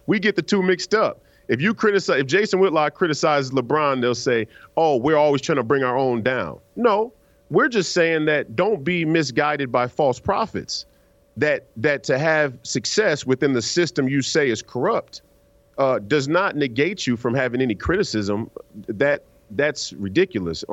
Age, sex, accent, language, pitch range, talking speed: 40-59, male, American, English, 125-175 Hz, 175 wpm